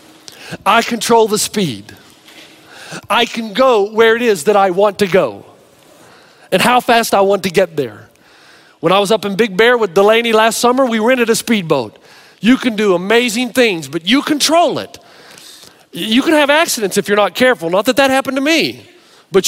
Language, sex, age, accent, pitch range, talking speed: English, male, 40-59, American, 205-270 Hz, 190 wpm